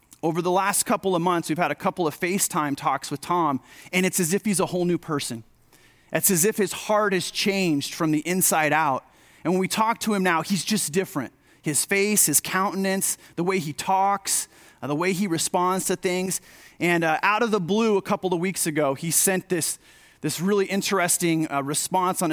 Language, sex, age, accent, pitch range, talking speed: English, male, 30-49, American, 150-190 Hz, 215 wpm